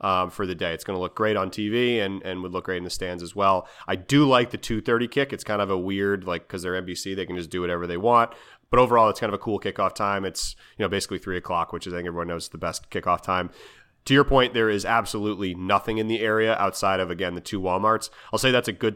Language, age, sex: English, 30-49, male